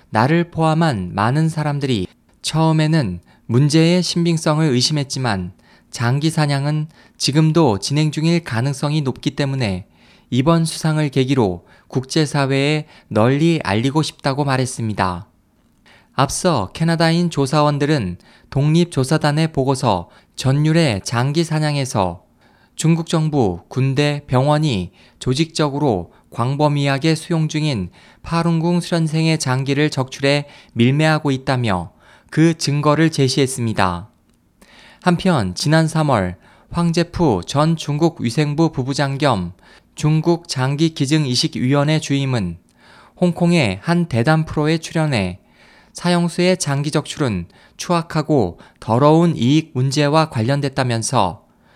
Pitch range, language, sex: 125-160 Hz, Korean, male